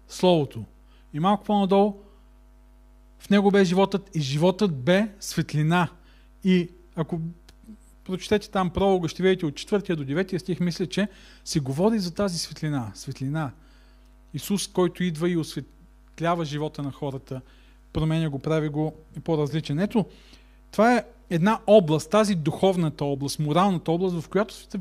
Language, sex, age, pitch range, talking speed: Bulgarian, male, 40-59, 150-200 Hz, 145 wpm